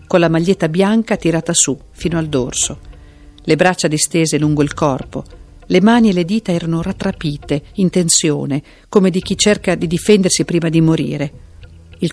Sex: female